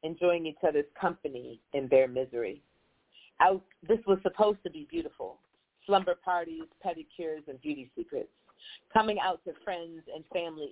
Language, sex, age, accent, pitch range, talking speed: English, female, 40-59, American, 150-185 Hz, 140 wpm